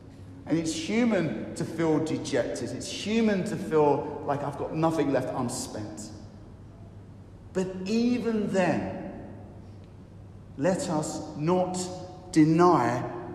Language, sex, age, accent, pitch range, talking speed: English, male, 40-59, British, 110-170 Hz, 105 wpm